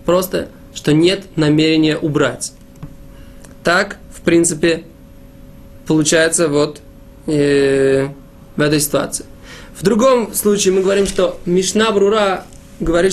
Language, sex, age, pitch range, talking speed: Russian, male, 20-39, 155-195 Hz, 95 wpm